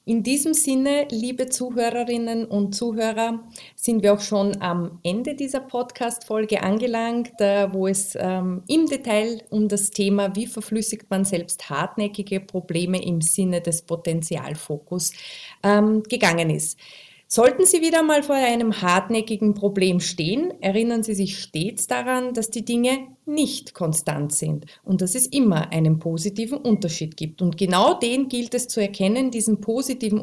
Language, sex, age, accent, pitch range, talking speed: German, female, 30-49, Austrian, 185-240 Hz, 145 wpm